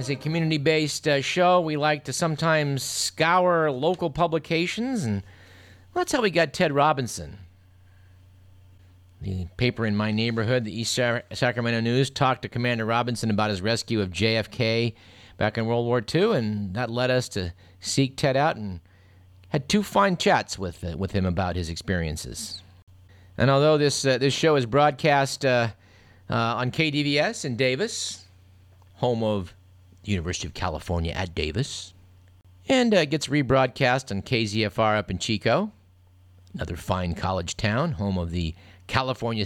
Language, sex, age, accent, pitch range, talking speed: English, male, 50-69, American, 95-145 Hz, 155 wpm